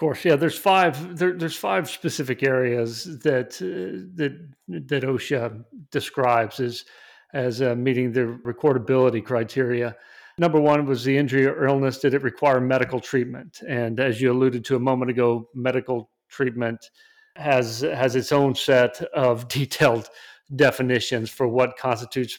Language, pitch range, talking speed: English, 120-140 Hz, 145 wpm